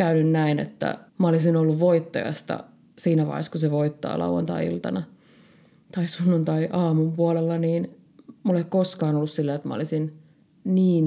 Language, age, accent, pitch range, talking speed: Finnish, 30-49, native, 160-195 Hz, 130 wpm